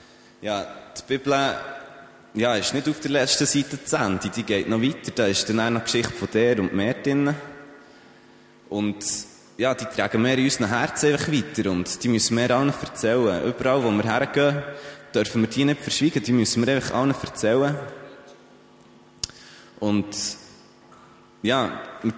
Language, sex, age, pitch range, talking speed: German, male, 20-39, 105-135 Hz, 165 wpm